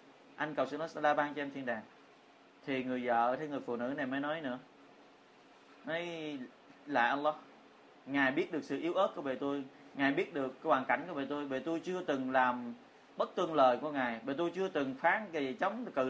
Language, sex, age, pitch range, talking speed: Vietnamese, male, 20-39, 130-160 Hz, 225 wpm